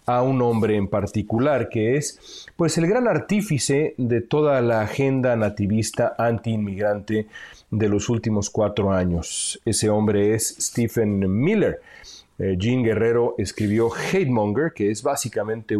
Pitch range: 105-135 Hz